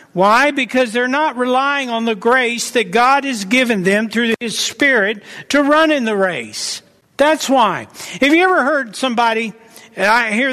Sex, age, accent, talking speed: male, 60-79, American, 175 wpm